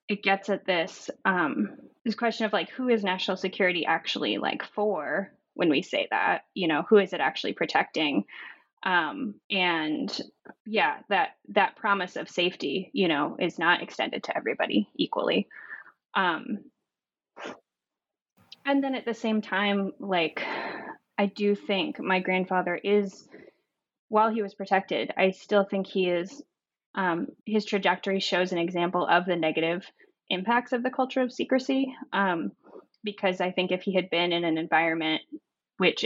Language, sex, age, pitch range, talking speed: English, female, 10-29, 175-220 Hz, 155 wpm